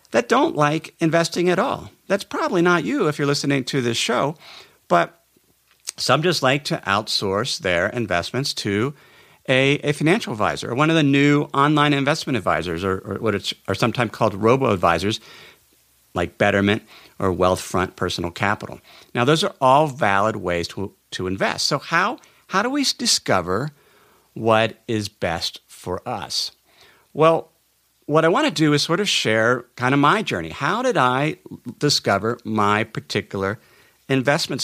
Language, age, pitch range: English, 50-69, 100-155 Hz